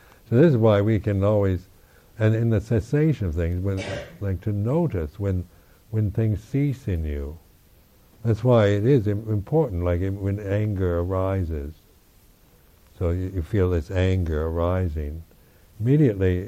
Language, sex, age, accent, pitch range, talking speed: English, male, 60-79, American, 90-110 Hz, 140 wpm